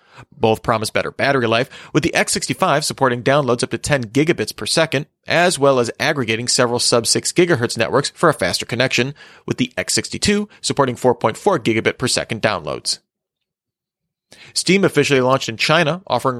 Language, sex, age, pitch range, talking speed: English, male, 30-49, 115-150 Hz, 155 wpm